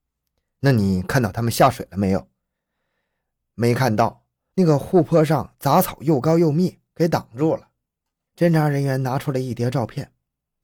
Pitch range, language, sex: 105-160 Hz, Chinese, male